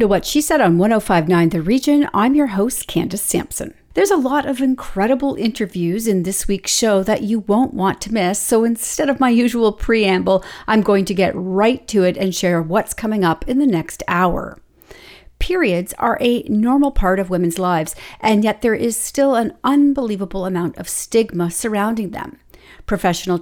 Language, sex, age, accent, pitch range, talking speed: English, female, 40-59, American, 185-255 Hz, 185 wpm